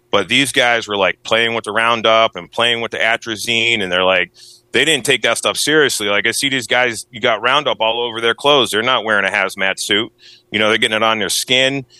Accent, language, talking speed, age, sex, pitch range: American, English, 245 wpm, 30-49, male, 115-145 Hz